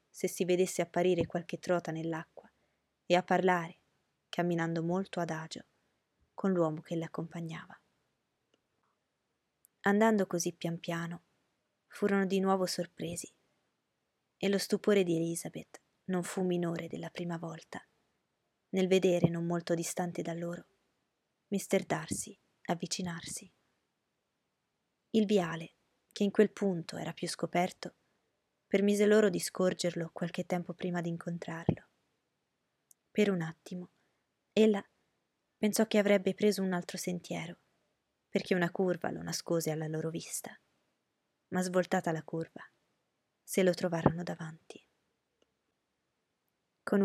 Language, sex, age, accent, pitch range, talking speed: Italian, female, 20-39, native, 170-190 Hz, 115 wpm